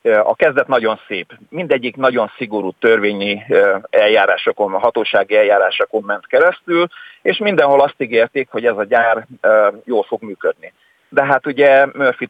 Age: 40-59